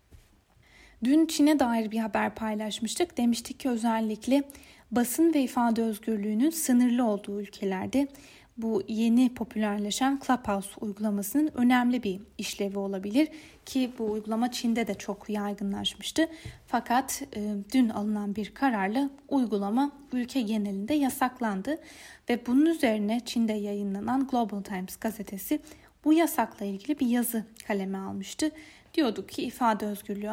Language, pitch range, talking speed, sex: Turkish, 210-265 Hz, 120 wpm, female